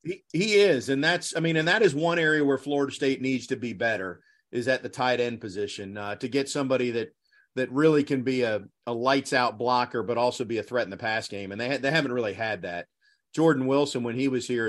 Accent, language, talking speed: American, English, 255 wpm